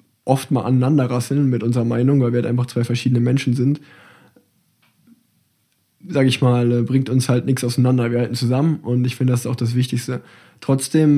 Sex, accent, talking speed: male, German, 185 wpm